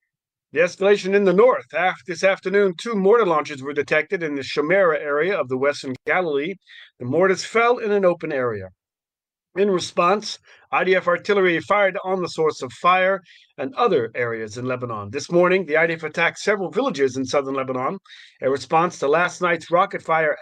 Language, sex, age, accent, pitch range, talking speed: English, male, 40-59, American, 150-195 Hz, 175 wpm